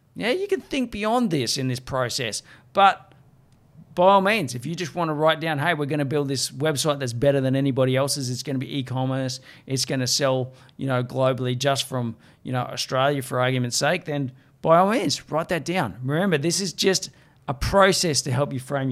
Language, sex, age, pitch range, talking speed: English, male, 20-39, 130-160 Hz, 220 wpm